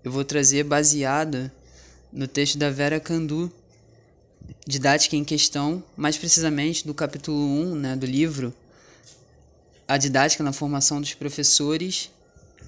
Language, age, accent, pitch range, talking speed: Portuguese, 20-39, Brazilian, 140-175 Hz, 125 wpm